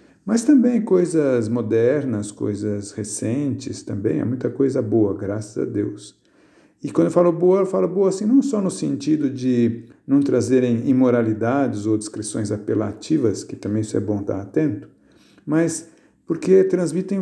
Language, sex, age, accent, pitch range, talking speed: Portuguese, male, 50-69, Brazilian, 110-140 Hz, 155 wpm